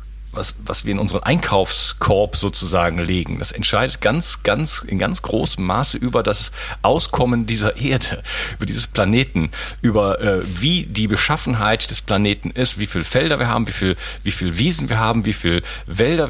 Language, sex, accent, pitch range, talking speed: German, male, German, 100-125 Hz, 175 wpm